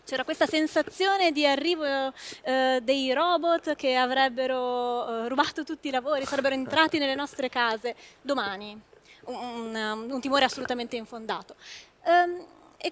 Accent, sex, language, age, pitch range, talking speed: native, female, Italian, 20-39, 240-315 Hz, 125 wpm